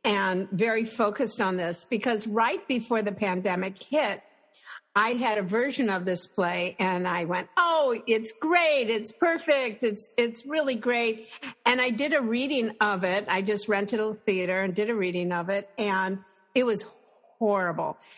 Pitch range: 190-245 Hz